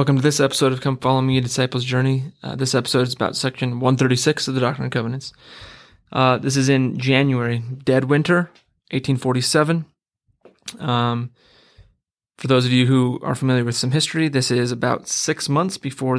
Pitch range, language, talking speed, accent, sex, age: 125-135 Hz, English, 175 wpm, American, male, 20-39